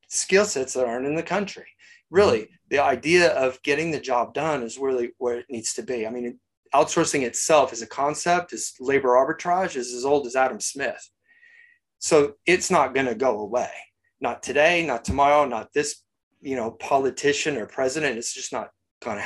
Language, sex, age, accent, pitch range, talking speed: English, male, 30-49, American, 125-175 Hz, 185 wpm